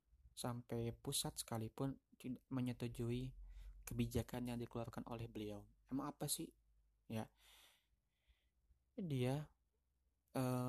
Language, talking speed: English, 90 wpm